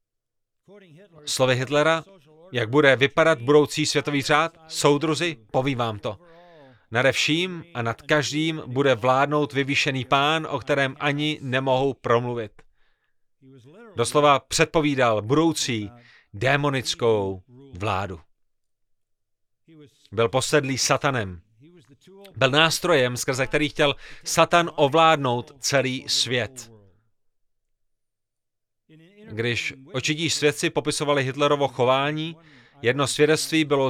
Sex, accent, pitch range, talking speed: male, native, 120-155 Hz, 90 wpm